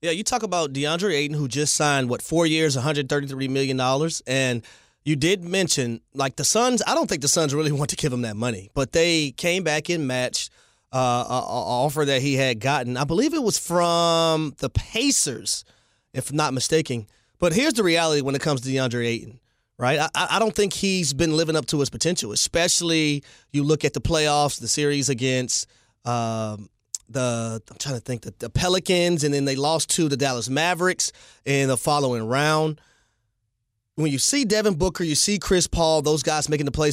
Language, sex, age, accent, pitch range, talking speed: English, male, 30-49, American, 130-170 Hz, 205 wpm